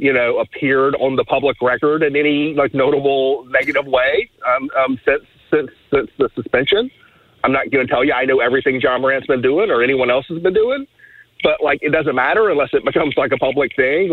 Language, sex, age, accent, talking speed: English, male, 40-59, American, 215 wpm